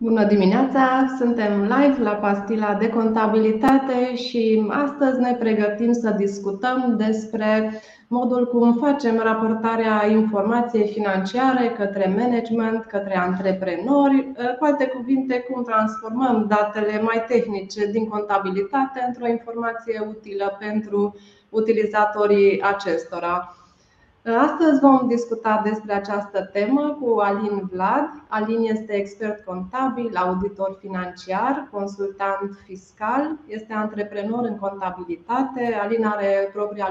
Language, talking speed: Romanian, 105 wpm